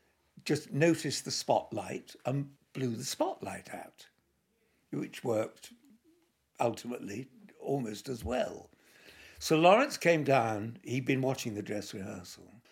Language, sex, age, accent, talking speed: English, male, 60-79, British, 120 wpm